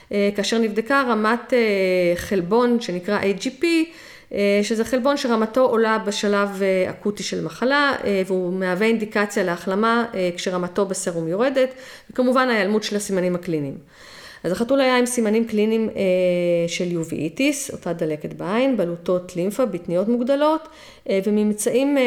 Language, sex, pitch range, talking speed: Hebrew, female, 185-235 Hz, 115 wpm